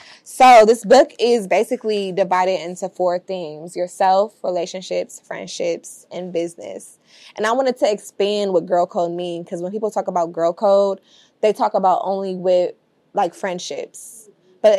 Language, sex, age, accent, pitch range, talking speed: English, female, 20-39, American, 180-220 Hz, 155 wpm